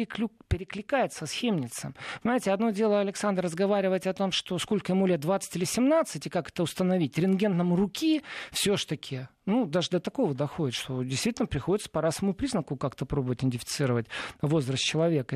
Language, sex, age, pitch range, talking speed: Russian, male, 50-69, 150-210 Hz, 165 wpm